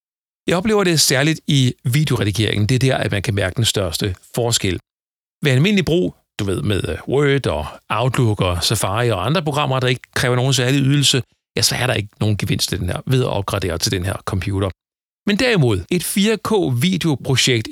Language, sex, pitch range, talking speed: Danish, male, 110-150 Hz, 190 wpm